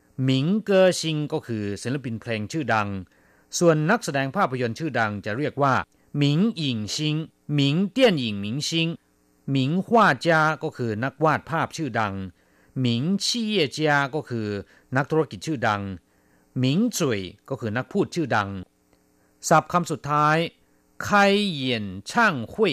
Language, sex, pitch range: Thai, male, 105-150 Hz